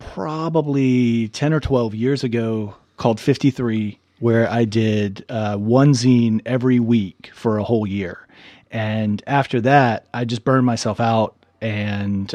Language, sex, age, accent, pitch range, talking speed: English, male, 30-49, American, 105-125 Hz, 140 wpm